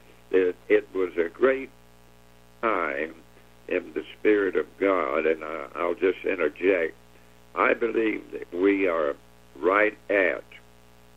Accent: American